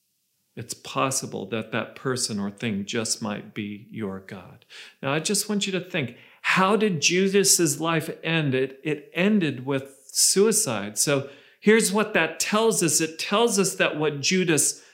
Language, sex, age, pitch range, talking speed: English, male, 40-59, 125-185 Hz, 165 wpm